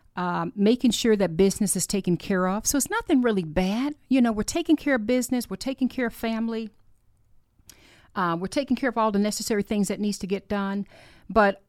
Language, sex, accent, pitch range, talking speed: English, female, American, 175-230 Hz, 210 wpm